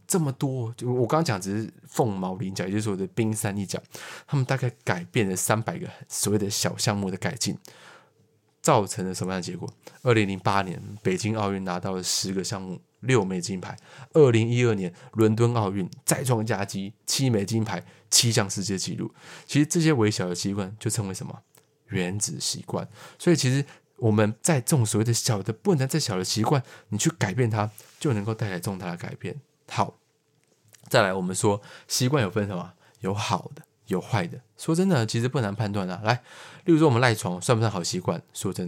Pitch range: 100-130 Hz